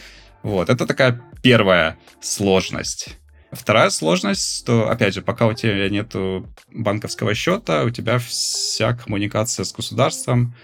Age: 20-39